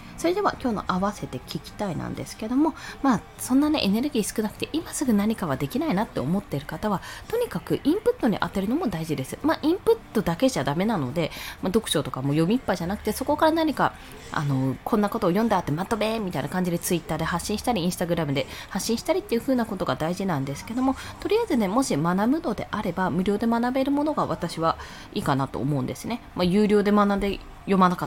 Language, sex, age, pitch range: Japanese, female, 20-39, 160-260 Hz